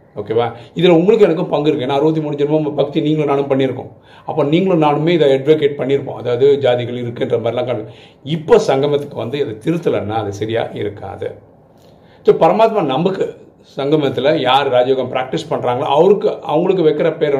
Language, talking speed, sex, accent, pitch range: Tamil, 95 wpm, male, native, 130-155 Hz